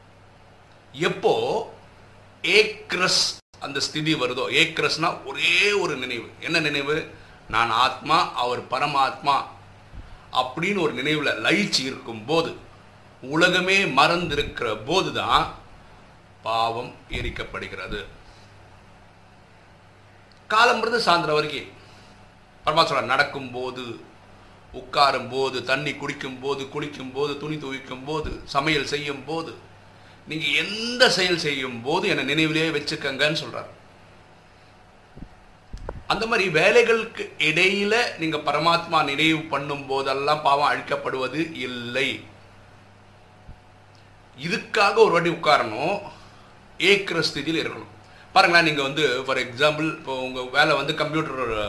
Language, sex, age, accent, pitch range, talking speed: Tamil, male, 50-69, native, 105-155 Hz, 55 wpm